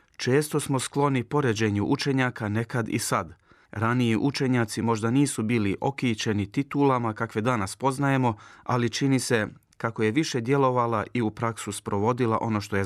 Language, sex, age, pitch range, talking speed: Croatian, male, 30-49, 105-130 Hz, 150 wpm